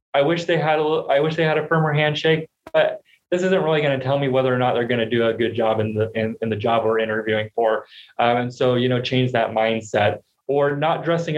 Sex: male